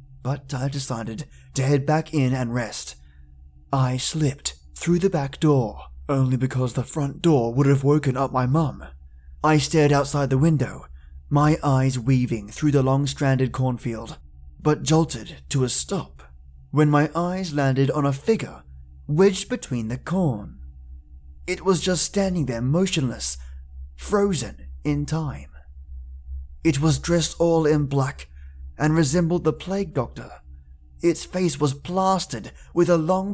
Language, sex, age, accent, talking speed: English, male, 20-39, British, 145 wpm